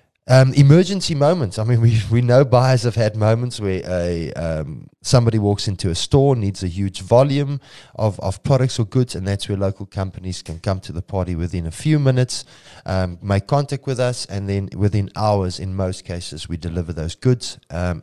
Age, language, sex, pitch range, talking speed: 20-39, English, male, 95-125 Hz, 200 wpm